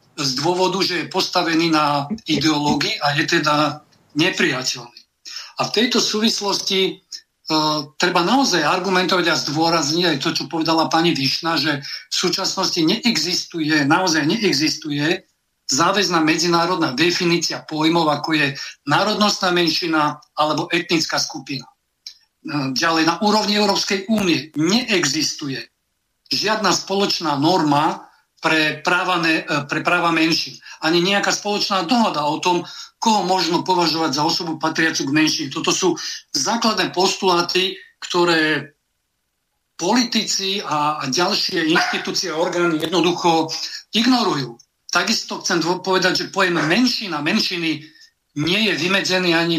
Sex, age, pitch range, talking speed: male, 50-69, 155-195 Hz, 115 wpm